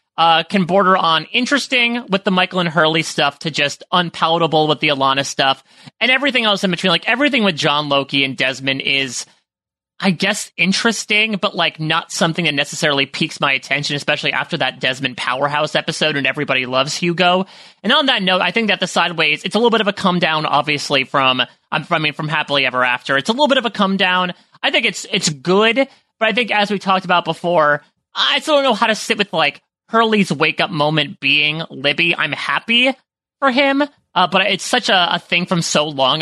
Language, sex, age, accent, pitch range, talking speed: English, male, 30-49, American, 145-205 Hz, 210 wpm